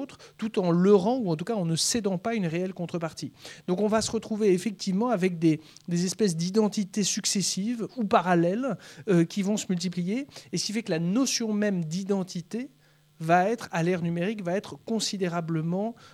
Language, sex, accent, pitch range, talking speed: French, male, French, 165-205 Hz, 185 wpm